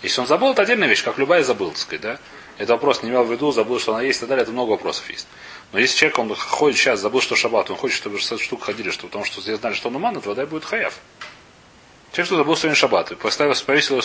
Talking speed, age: 280 wpm, 30-49